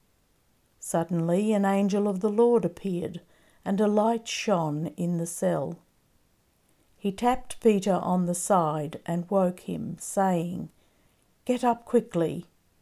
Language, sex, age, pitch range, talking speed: English, female, 50-69, 170-205 Hz, 125 wpm